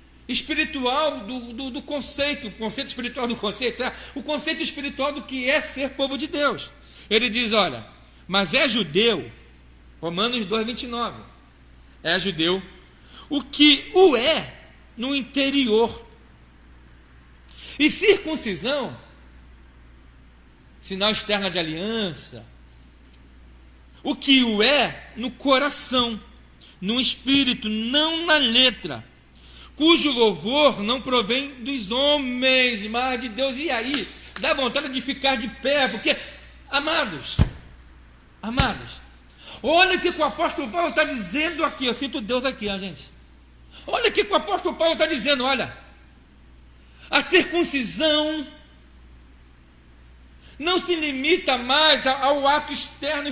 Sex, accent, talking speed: male, Brazilian, 115 wpm